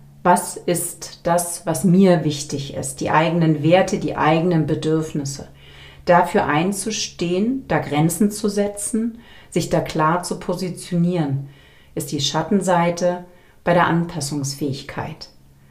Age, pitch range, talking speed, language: 40-59, 155-185 Hz, 115 wpm, German